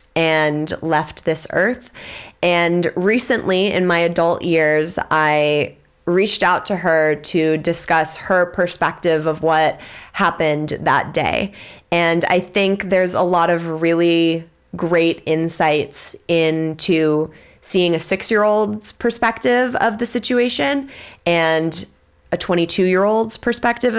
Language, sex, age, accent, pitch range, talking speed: English, female, 20-39, American, 160-200 Hz, 115 wpm